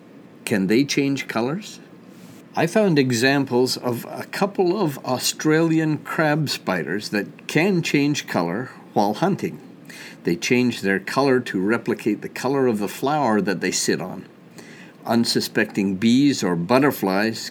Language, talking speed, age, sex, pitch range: English, 135 wpm, 60-79, male, 105-150 Hz